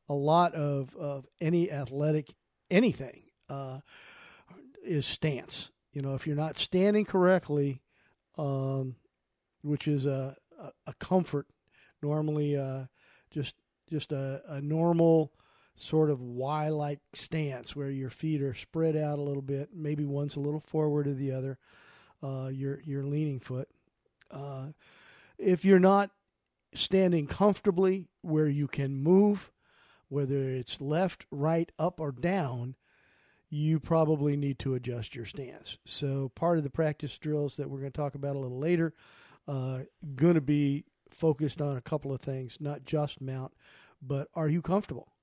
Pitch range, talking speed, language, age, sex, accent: 135-160 Hz, 150 wpm, English, 50-69, male, American